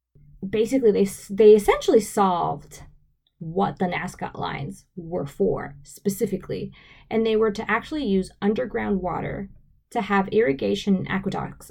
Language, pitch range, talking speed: English, 180-225 Hz, 130 wpm